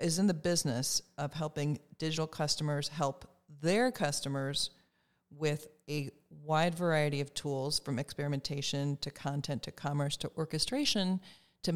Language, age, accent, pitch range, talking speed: English, 40-59, American, 150-180 Hz, 135 wpm